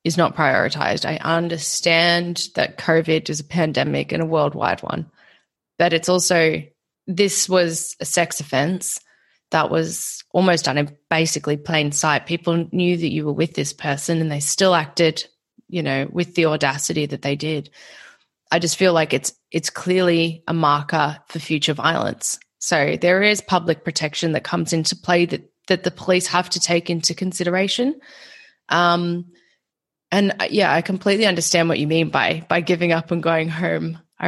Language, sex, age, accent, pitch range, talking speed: English, female, 20-39, Australian, 160-185 Hz, 170 wpm